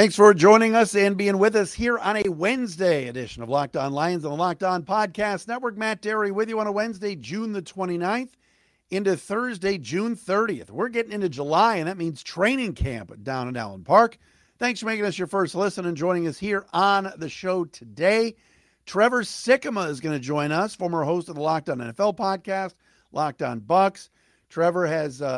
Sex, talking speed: male, 200 wpm